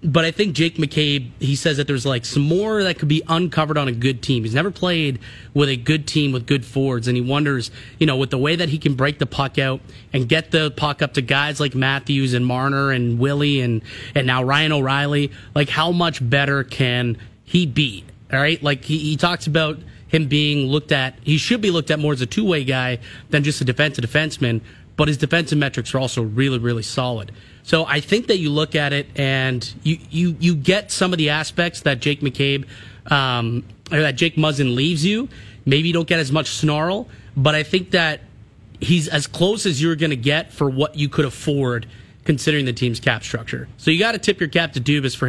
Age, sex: 30-49, male